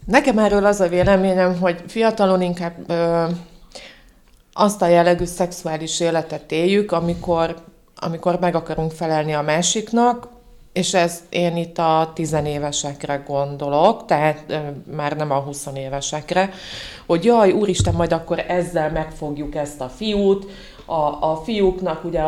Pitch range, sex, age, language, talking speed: 150-185 Hz, female, 30-49, Hungarian, 130 wpm